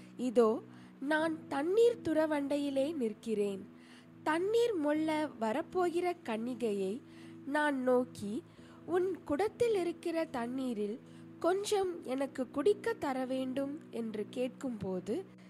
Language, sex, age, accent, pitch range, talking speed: Tamil, female, 20-39, native, 220-345 Hz, 85 wpm